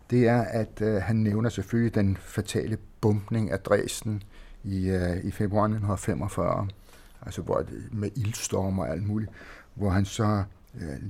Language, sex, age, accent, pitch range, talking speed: Danish, male, 60-79, native, 95-115 Hz, 155 wpm